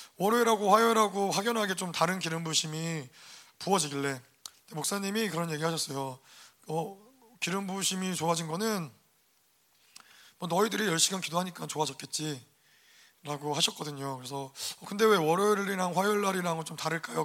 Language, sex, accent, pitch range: Korean, male, native, 155-225 Hz